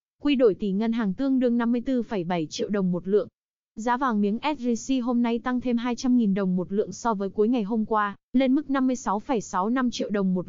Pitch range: 200-250 Hz